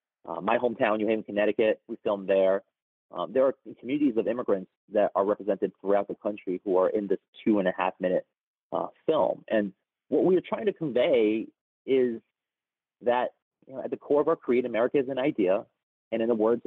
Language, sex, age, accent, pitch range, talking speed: English, male, 30-49, American, 95-125 Hz, 180 wpm